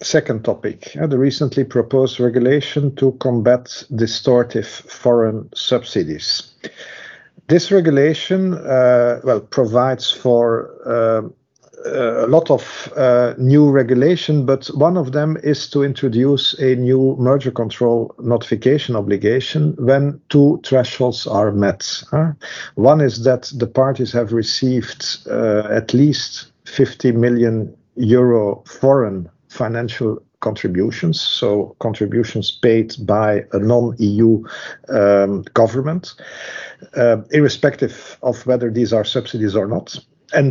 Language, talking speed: English, 115 wpm